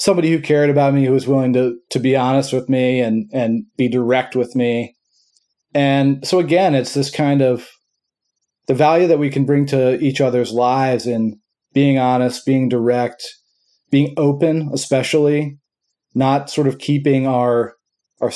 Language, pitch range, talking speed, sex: English, 120-145 Hz, 165 wpm, male